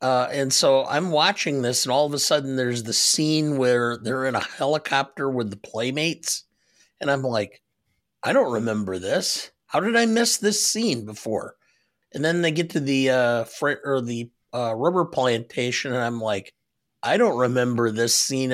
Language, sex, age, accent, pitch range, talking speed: English, male, 50-69, American, 120-150 Hz, 185 wpm